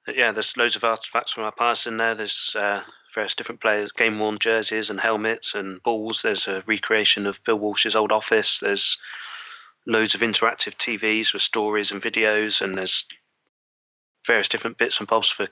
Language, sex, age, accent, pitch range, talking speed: English, male, 20-39, British, 100-110 Hz, 180 wpm